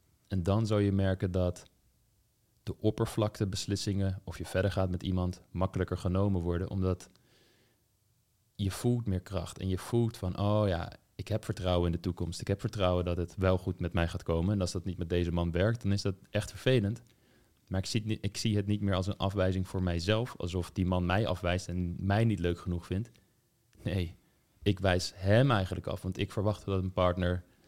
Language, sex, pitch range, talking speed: Dutch, male, 90-110 Hz, 210 wpm